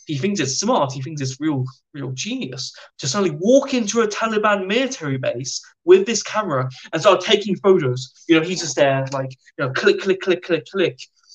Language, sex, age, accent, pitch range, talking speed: English, male, 10-29, British, 130-200 Hz, 200 wpm